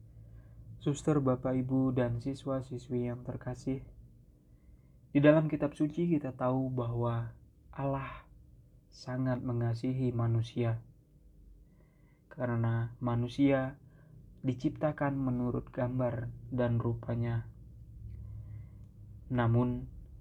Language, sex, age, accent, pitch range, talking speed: Indonesian, male, 20-39, native, 115-135 Hz, 75 wpm